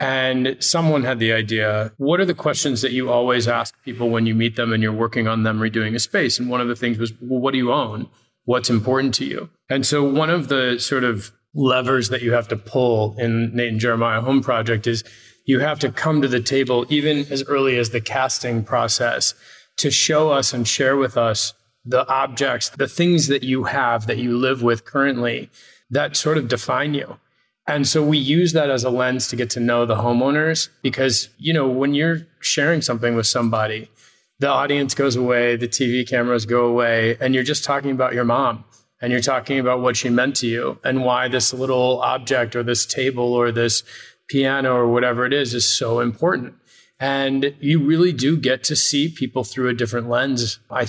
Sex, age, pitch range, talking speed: male, 30-49, 120-135 Hz, 210 wpm